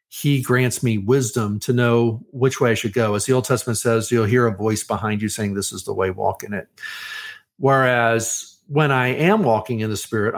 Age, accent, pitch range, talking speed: 50-69, American, 110-135 Hz, 220 wpm